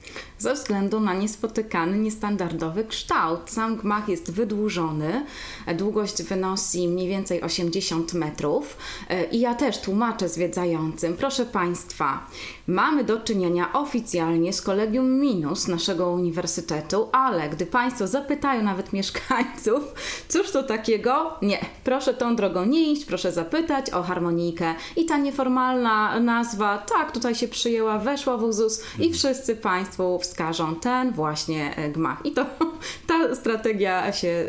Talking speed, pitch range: 130 wpm, 175-240 Hz